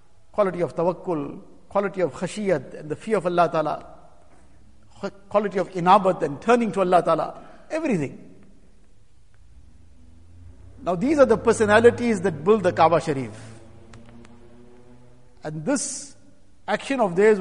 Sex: male